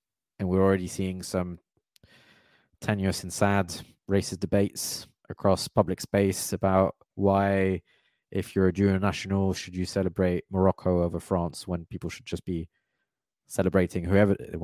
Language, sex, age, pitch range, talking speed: English, male, 20-39, 95-110 Hz, 130 wpm